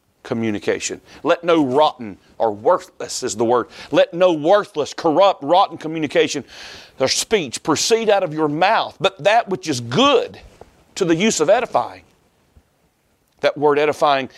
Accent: American